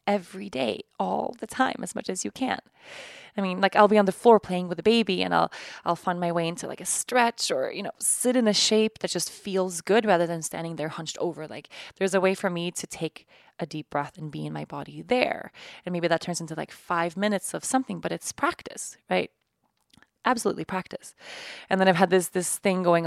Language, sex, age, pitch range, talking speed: English, female, 20-39, 175-220 Hz, 235 wpm